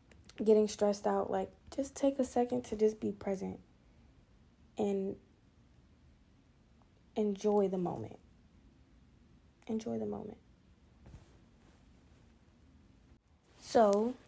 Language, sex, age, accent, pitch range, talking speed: English, female, 20-39, American, 185-220 Hz, 85 wpm